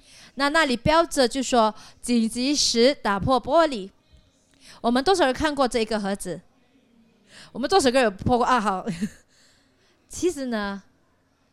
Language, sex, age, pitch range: Chinese, female, 20-39, 195-270 Hz